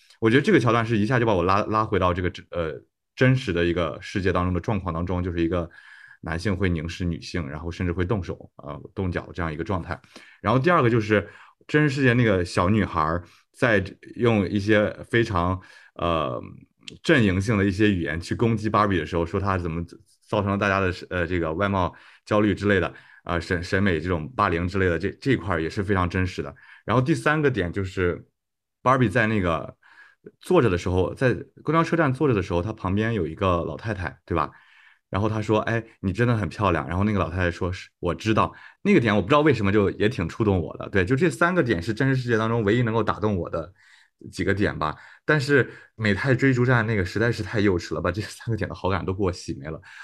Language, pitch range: Chinese, 90-115 Hz